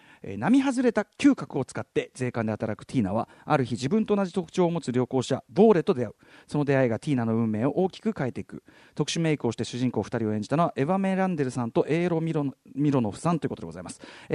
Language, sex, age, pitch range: Japanese, male, 40-59, 125-195 Hz